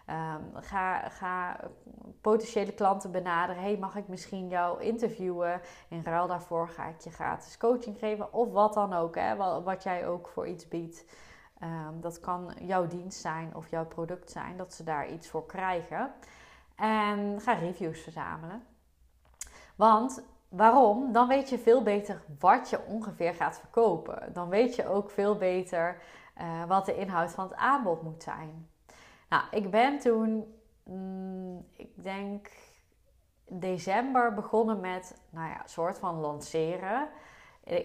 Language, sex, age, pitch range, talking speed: Dutch, female, 20-39, 170-210 Hz, 155 wpm